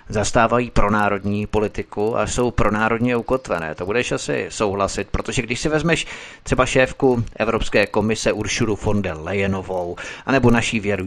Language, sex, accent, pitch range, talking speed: Czech, male, native, 100-120 Hz, 150 wpm